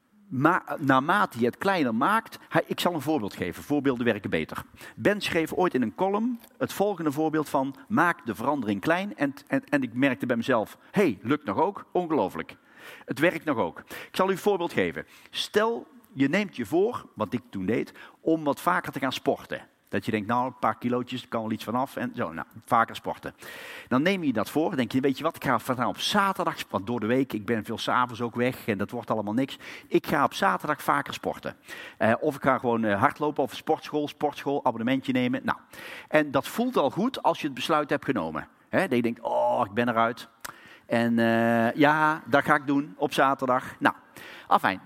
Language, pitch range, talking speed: Dutch, 125-190 Hz, 215 wpm